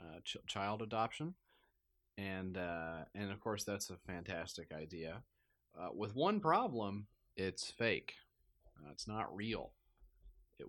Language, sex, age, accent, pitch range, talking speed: English, male, 30-49, American, 75-115 Hz, 135 wpm